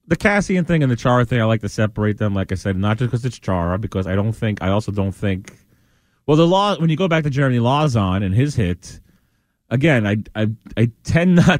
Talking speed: 235 wpm